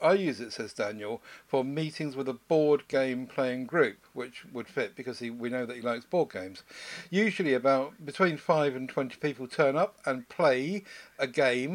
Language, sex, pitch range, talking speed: English, male, 125-145 Hz, 190 wpm